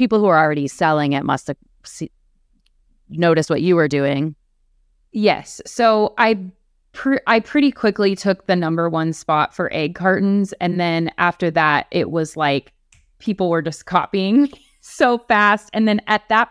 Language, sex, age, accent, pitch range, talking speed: English, female, 30-49, American, 160-205 Hz, 160 wpm